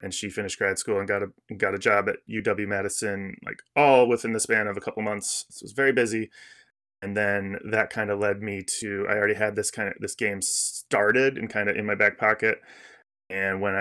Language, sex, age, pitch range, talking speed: English, male, 20-39, 100-115 Hz, 235 wpm